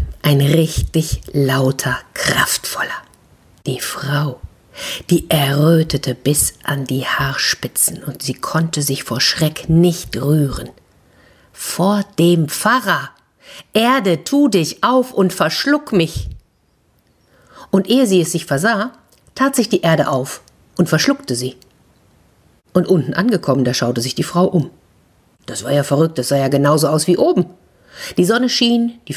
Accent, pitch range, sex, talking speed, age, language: German, 140-205 Hz, female, 140 wpm, 50-69, German